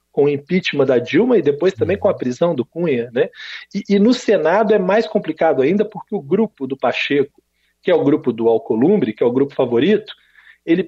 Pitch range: 135-195 Hz